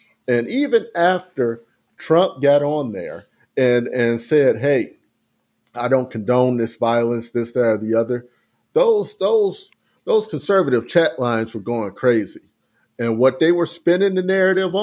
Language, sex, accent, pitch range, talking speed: English, male, American, 120-170 Hz, 145 wpm